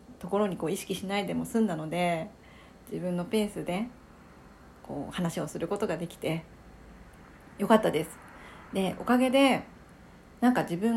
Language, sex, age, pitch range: Japanese, female, 40-59, 175-225 Hz